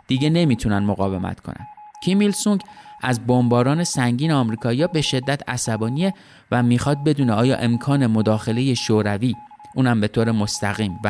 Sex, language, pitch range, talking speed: male, Persian, 110-160 Hz, 130 wpm